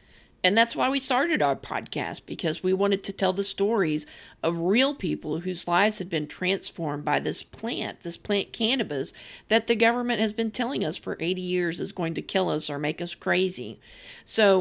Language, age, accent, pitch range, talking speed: English, 40-59, American, 160-215 Hz, 195 wpm